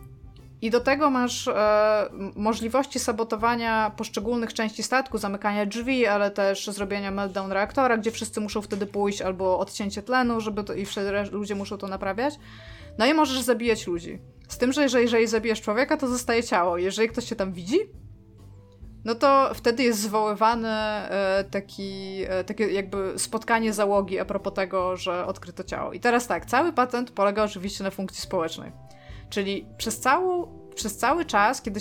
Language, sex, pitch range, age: Polish, female, 195-240 Hz, 20-39